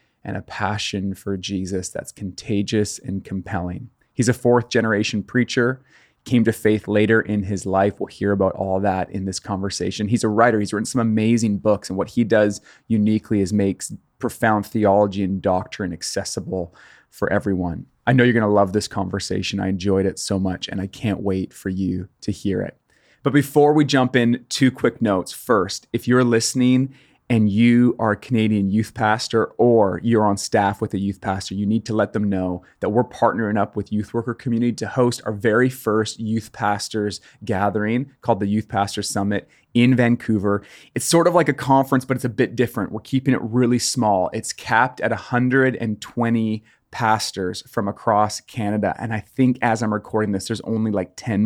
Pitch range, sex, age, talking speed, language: 100-120 Hz, male, 30-49, 190 wpm, English